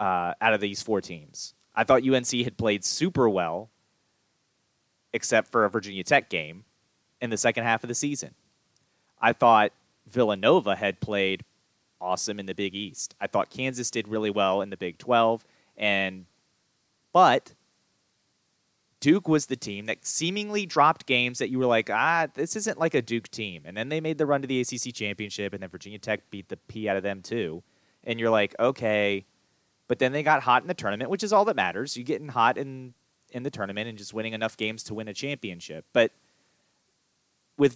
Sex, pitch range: male, 105-145 Hz